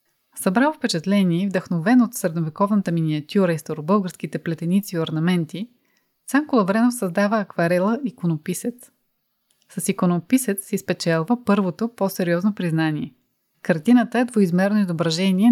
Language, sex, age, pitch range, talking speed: Bulgarian, female, 30-49, 165-215 Hz, 110 wpm